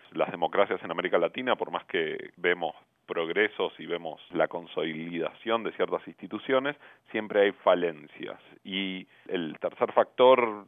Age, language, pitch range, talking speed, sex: 40-59, Spanish, 90-155 Hz, 135 wpm, male